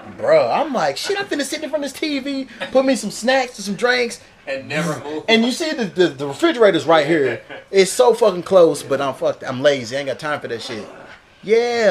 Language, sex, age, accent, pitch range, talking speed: English, male, 30-49, American, 140-195 Hz, 235 wpm